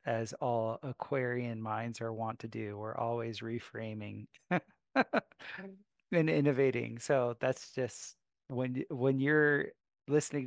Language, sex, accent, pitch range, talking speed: English, male, American, 115-140 Hz, 115 wpm